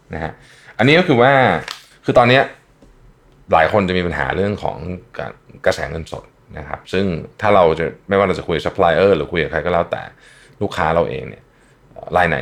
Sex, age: male, 20-39